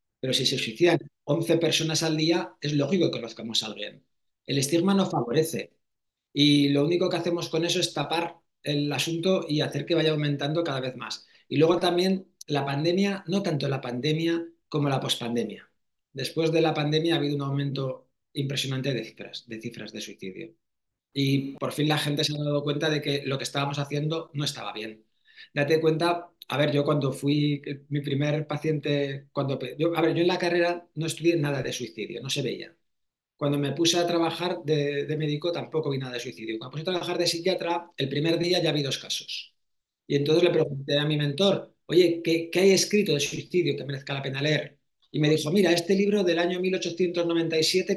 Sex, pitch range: male, 140-170 Hz